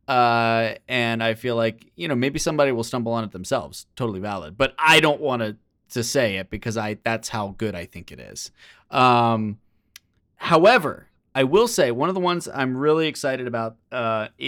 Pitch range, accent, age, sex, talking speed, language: 115-135 Hz, American, 20-39, male, 190 wpm, English